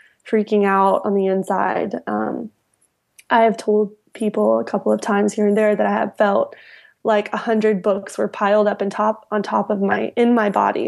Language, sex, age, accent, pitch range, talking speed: English, female, 20-39, American, 210-230 Hz, 205 wpm